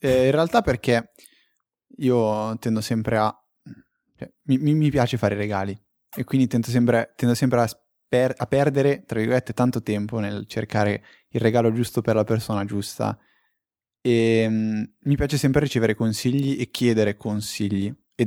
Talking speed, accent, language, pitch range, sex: 150 wpm, native, Italian, 110-130 Hz, male